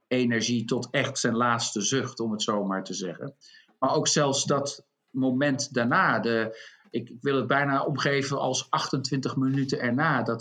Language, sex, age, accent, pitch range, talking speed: English, male, 50-69, Dutch, 110-135 Hz, 160 wpm